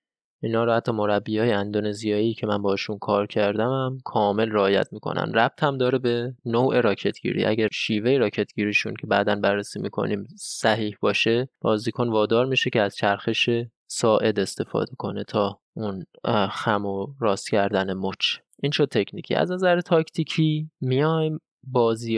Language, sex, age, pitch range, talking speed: Persian, male, 20-39, 105-125 Hz, 140 wpm